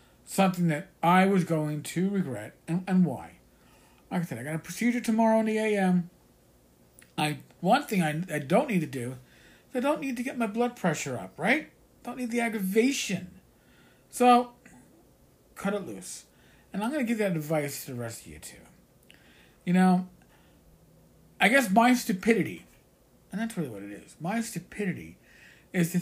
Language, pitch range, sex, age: English, 155-210 Hz, male, 50-69